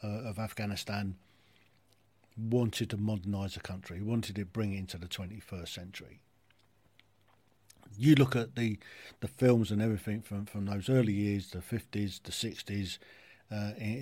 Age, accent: 50-69, British